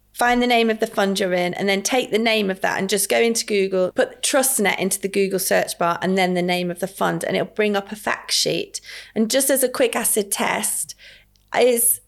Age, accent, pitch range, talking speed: 30-49, British, 180-225 Hz, 245 wpm